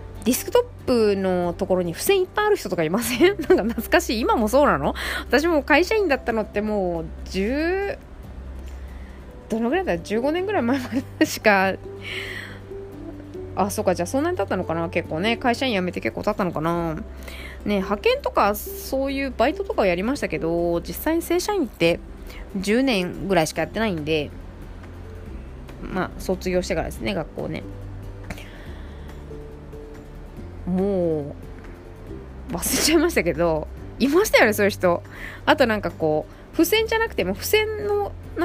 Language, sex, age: Japanese, female, 20-39